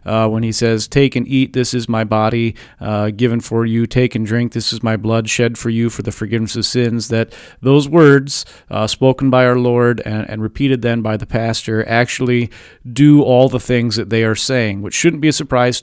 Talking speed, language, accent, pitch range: 225 wpm, English, American, 115-135 Hz